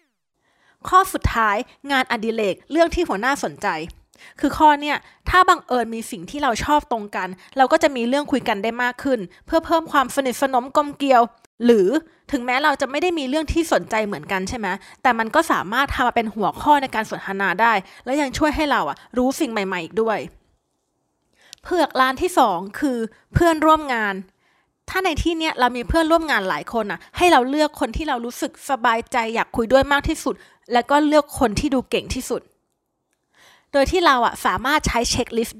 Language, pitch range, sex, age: Thai, 230-300 Hz, female, 20-39